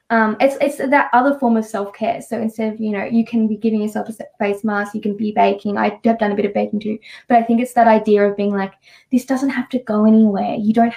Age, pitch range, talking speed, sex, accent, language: 10-29, 205-235 Hz, 275 wpm, female, Australian, English